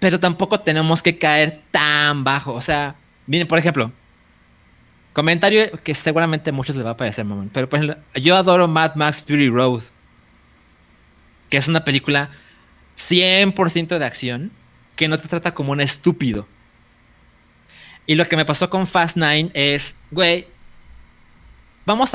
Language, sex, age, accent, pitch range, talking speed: Spanish, male, 30-49, Mexican, 135-185 Hz, 150 wpm